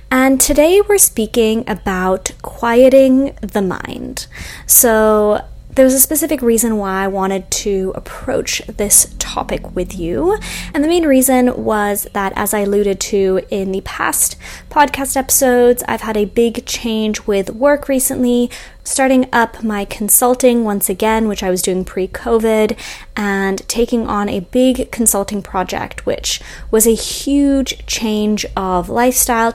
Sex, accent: female, American